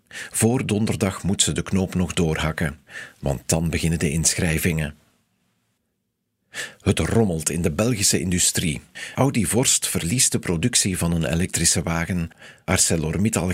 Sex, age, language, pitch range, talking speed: male, 50-69, Dutch, 85-110 Hz, 130 wpm